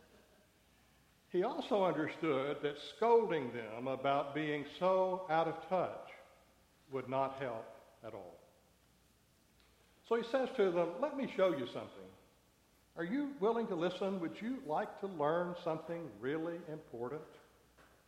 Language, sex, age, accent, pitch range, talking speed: English, male, 60-79, American, 135-185 Hz, 135 wpm